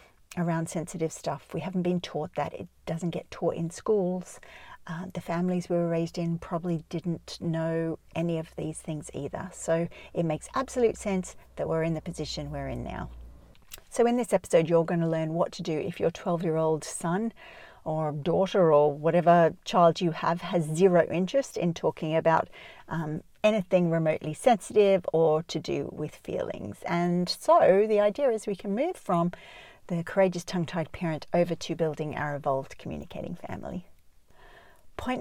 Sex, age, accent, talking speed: female, 40-59, Australian, 170 wpm